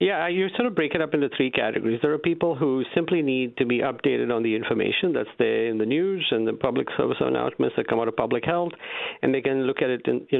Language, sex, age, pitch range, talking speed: English, male, 50-69, 115-145 Hz, 265 wpm